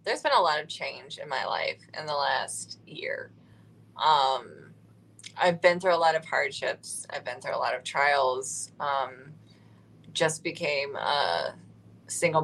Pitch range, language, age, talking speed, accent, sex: 160-195 Hz, English, 20-39, 160 wpm, American, female